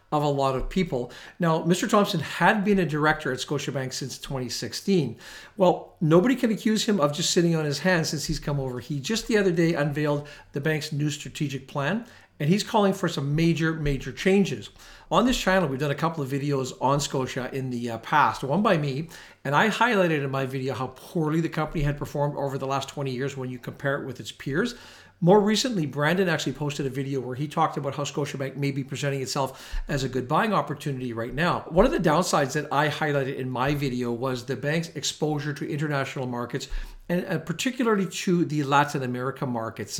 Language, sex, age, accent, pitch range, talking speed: English, male, 50-69, American, 135-175 Hz, 210 wpm